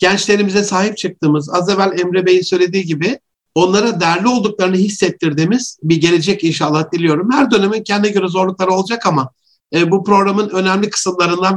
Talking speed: 145 wpm